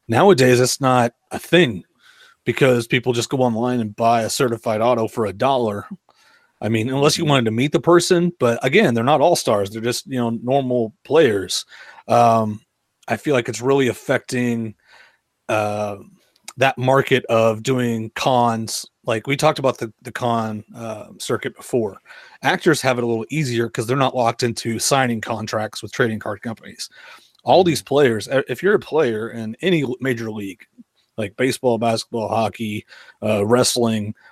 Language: English